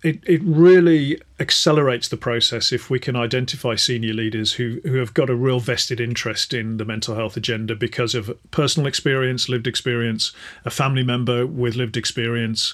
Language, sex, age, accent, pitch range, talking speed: English, male, 40-59, British, 115-135 Hz, 175 wpm